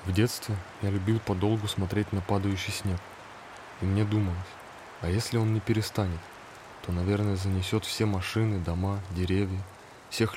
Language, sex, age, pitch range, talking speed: Russian, male, 20-39, 95-105 Hz, 145 wpm